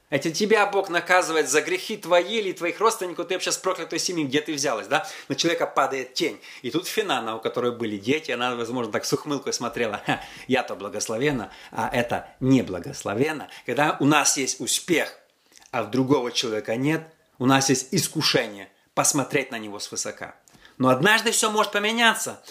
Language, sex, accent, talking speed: Russian, male, native, 175 wpm